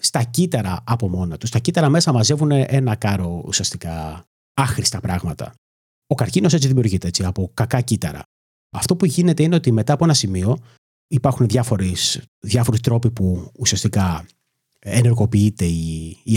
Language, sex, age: Greek, male, 30-49